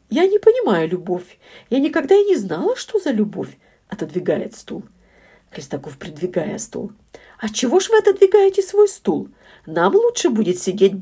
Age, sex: 50-69, female